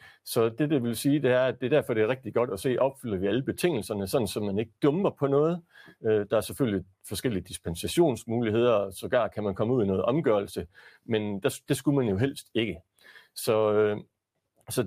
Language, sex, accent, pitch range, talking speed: Danish, male, native, 105-140 Hz, 215 wpm